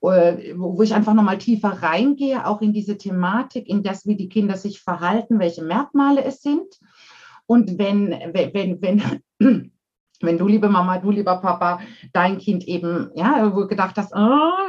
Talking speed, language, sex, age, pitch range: 170 wpm, German, female, 50-69, 180-225 Hz